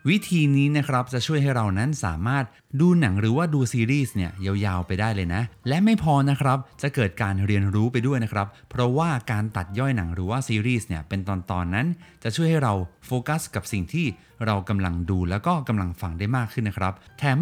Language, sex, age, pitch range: Thai, male, 20-39, 100-150 Hz